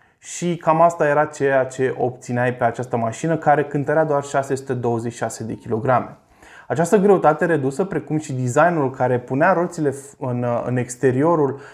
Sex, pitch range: male, 125-155 Hz